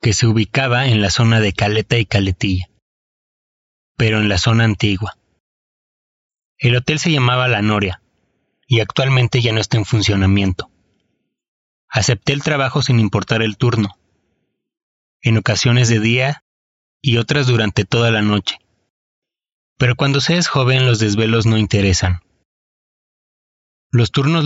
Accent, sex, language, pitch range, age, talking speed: Mexican, male, Spanish, 105-125 Hz, 30-49, 135 wpm